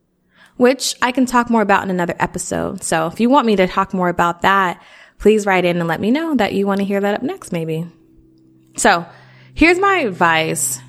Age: 20-39